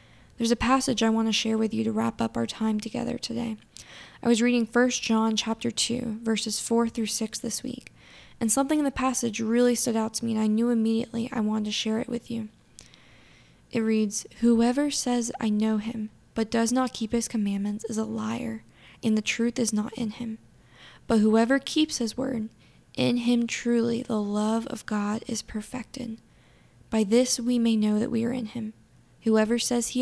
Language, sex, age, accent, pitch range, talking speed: English, female, 10-29, American, 220-240 Hz, 200 wpm